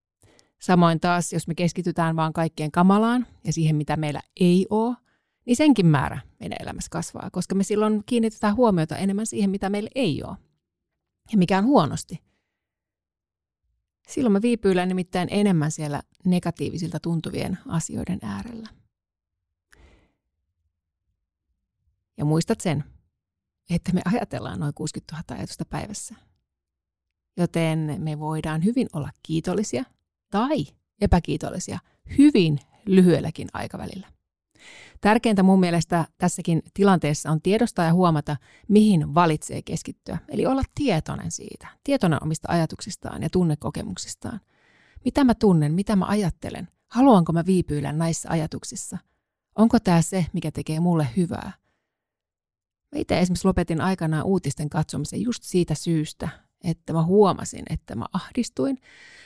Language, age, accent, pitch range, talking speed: Finnish, 30-49, native, 150-195 Hz, 125 wpm